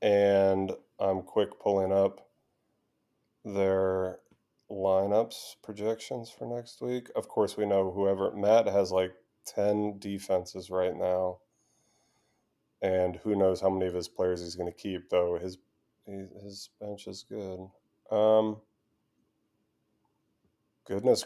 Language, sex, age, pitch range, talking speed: English, male, 30-49, 95-105 Hz, 120 wpm